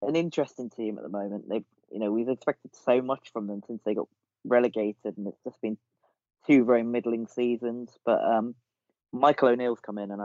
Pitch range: 100-115 Hz